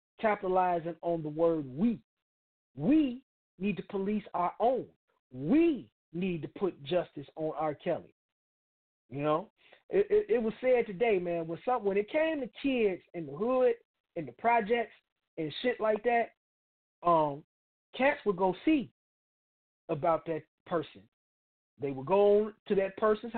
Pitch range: 155-205 Hz